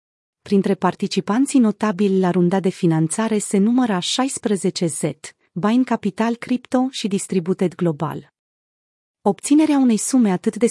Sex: female